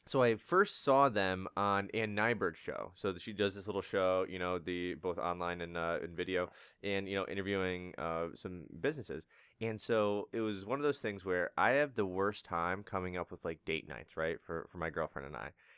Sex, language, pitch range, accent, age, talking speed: male, English, 90-120 Hz, American, 20-39, 220 wpm